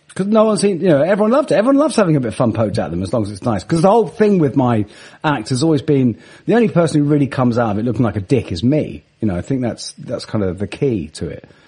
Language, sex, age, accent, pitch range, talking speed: English, male, 40-59, British, 135-200 Hz, 315 wpm